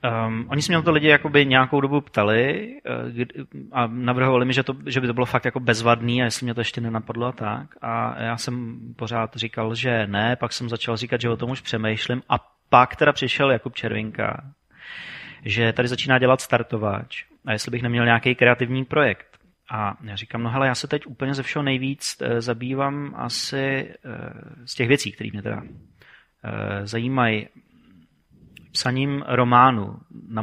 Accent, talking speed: native, 180 wpm